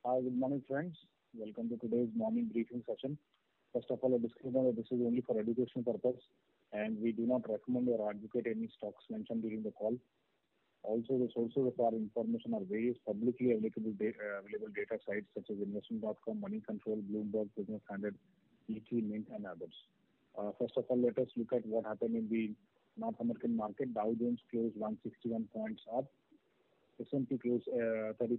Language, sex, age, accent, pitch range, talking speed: English, male, 30-49, Indian, 110-130 Hz, 180 wpm